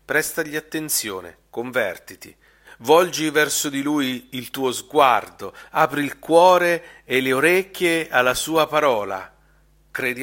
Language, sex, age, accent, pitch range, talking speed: Italian, male, 40-59, native, 110-150 Hz, 115 wpm